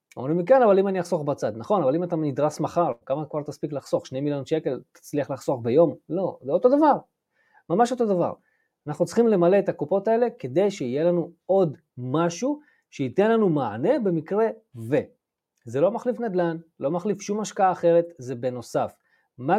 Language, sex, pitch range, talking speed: Hebrew, male, 150-220 Hz, 180 wpm